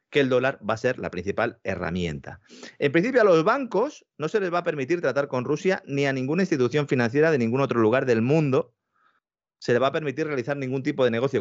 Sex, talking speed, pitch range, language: male, 230 wpm, 105-150 Hz, Spanish